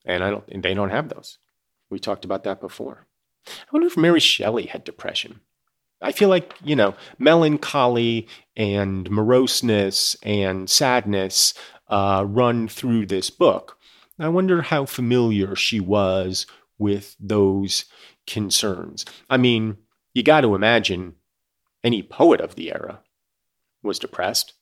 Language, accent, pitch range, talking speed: English, American, 100-145 Hz, 140 wpm